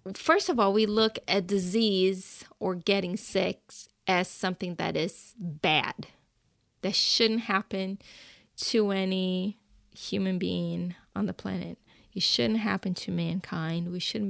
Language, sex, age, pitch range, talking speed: English, female, 20-39, 195-245 Hz, 135 wpm